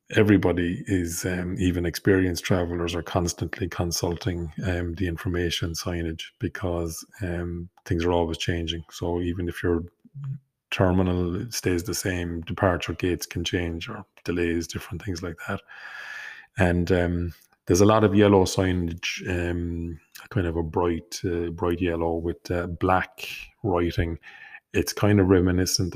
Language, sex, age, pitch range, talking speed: English, male, 30-49, 85-95 Hz, 140 wpm